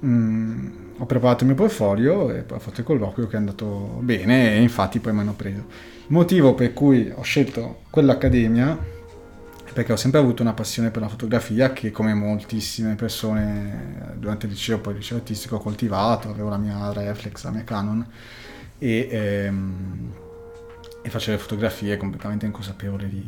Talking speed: 175 wpm